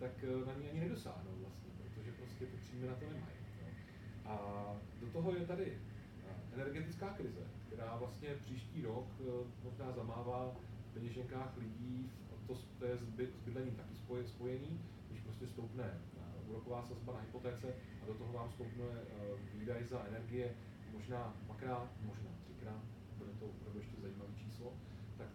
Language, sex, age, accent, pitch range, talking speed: Czech, male, 40-59, native, 105-120 Hz, 140 wpm